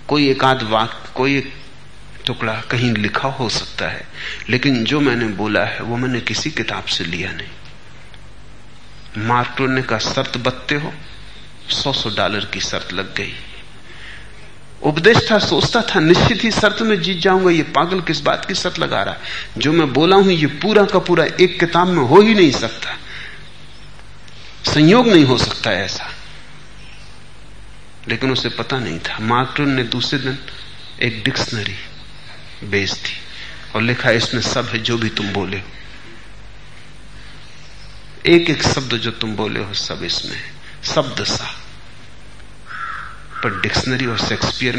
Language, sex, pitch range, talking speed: Hindi, male, 110-145 Hz, 150 wpm